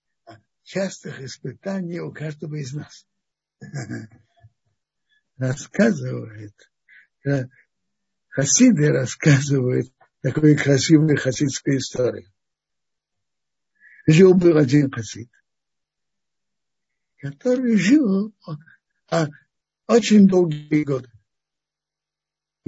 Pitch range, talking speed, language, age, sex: 135-210 Hz, 60 wpm, Russian, 60-79, male